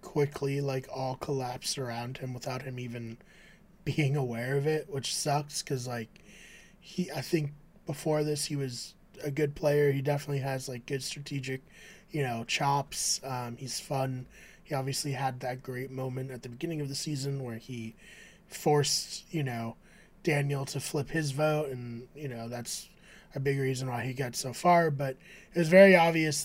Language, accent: English, American